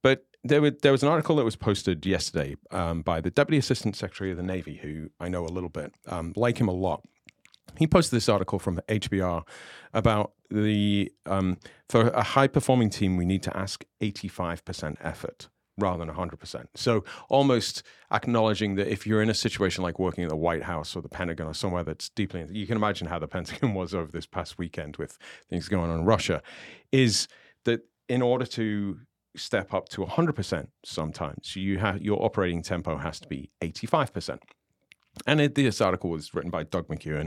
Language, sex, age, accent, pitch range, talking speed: English, male, 40-59, British, 85-115 Hz, 190 wpm